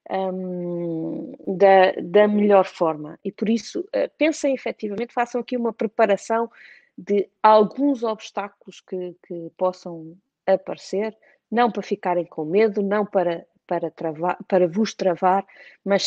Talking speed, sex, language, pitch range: 115 wpm, female, Portuguese, 180-225 Hz